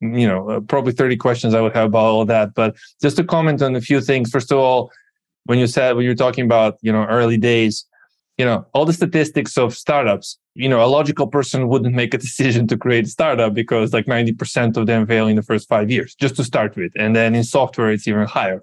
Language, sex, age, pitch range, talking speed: English, male, 20-39, 110-135 Hz, 245 wpm